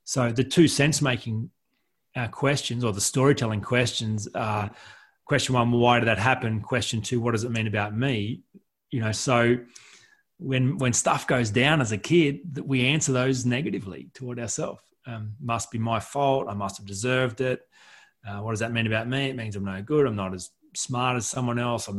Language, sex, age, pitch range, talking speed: English, male, 30-49, 105-125 Hz, 195 wpm